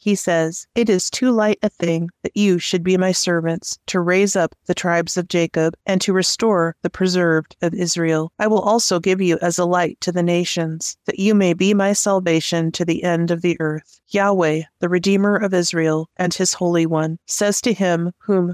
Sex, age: female, 30-49